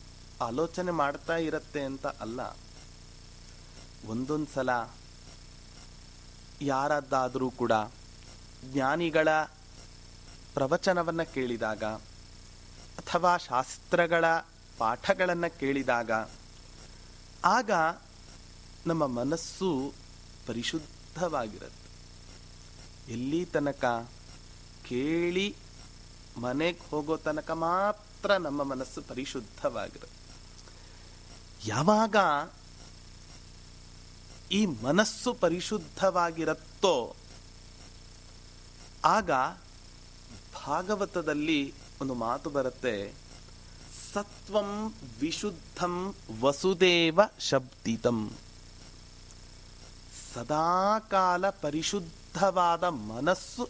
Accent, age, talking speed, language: native, 30-49, 30 wpm, Kannada